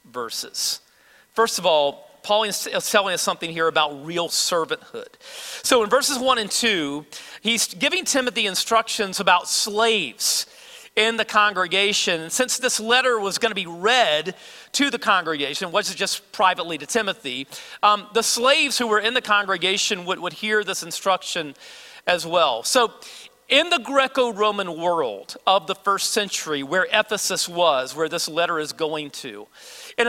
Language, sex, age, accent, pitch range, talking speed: English, male, 40-59, American, 180-240 Hz, 160 wpm